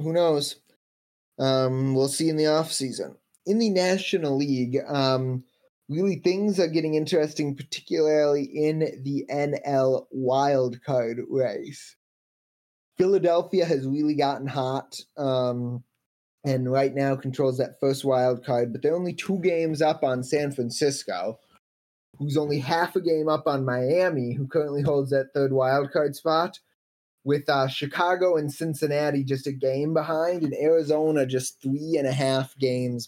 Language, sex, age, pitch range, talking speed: English, male, 20-39, 130-150 Hz, 145 wpm